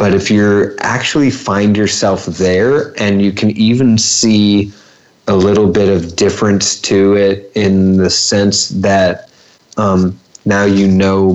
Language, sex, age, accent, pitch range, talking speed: English, male, 30-49, American, 90-105 Hz, 145 wpm